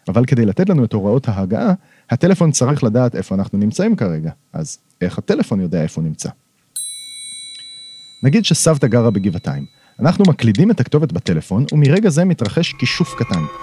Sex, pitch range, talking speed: male, 115-175 Hz, 155 wpm